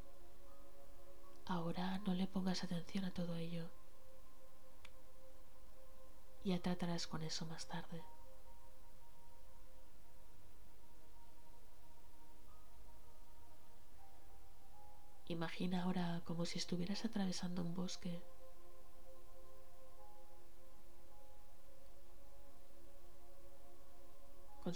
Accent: Spanish